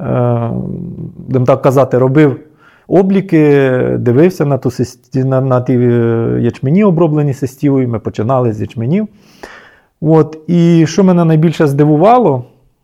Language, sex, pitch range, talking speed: Ukrainian, male, 125-170 Hz, 120 wpm